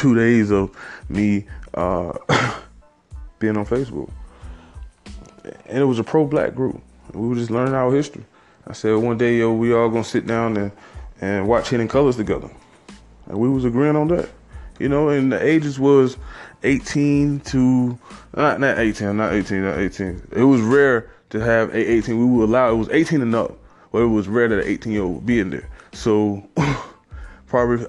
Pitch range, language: 110-160 Hz, English